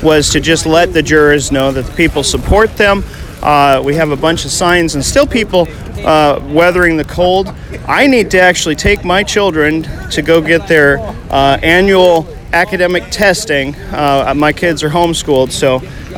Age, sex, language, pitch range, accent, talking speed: 40-59, male, English, 140-180 Hz, American, 180 wpm